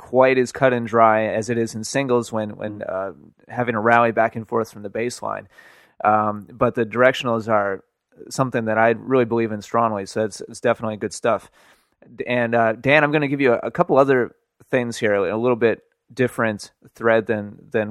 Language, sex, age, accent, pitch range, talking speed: English, male, 30-49, American, 110-125 Hz, 205 wpm